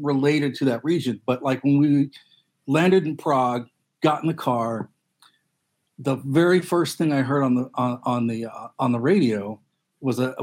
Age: 40-59